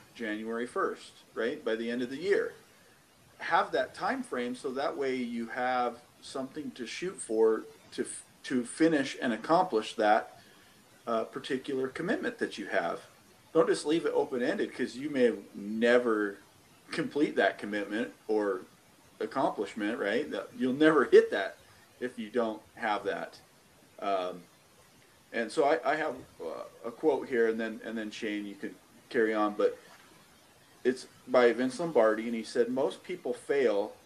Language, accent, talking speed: English, American, 155 wpm